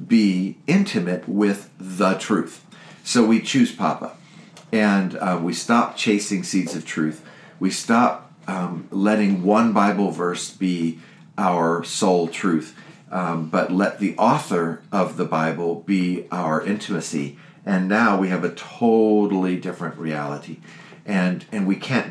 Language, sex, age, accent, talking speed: English, male, 50-69, American, 140 wpm